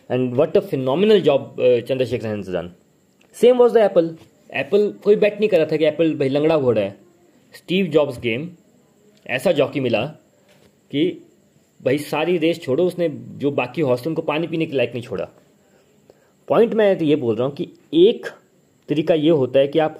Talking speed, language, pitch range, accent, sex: 185 wpm, Hindi, 125-185 Hz, native, male